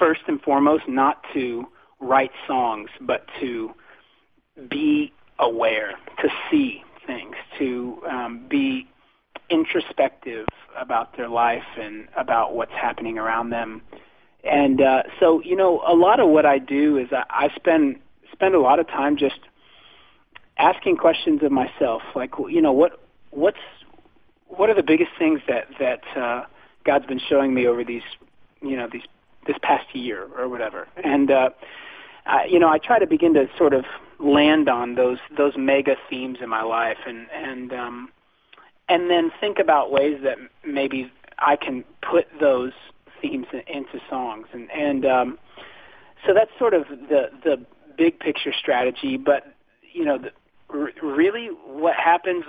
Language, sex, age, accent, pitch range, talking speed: English, male, 40-59, American, 130-200 Hz, 155 wpm